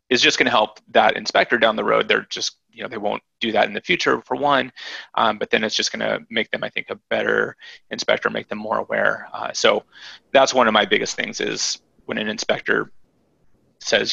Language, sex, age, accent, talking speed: English, male, 20-39, American, 230 wpm